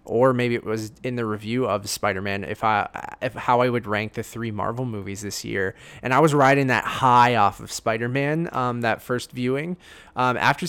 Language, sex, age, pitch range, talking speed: English, male, 20-39, 110-155 Hz, 220 wpm